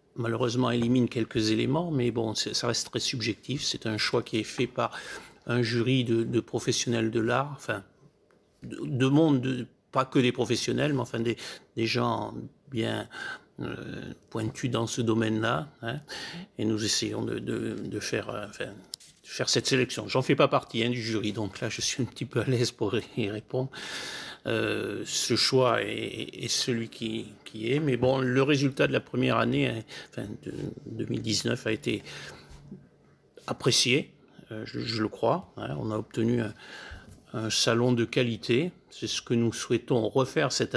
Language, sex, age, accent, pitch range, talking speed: French, male, 50-69, French, 115-130 Hz, 175 wpm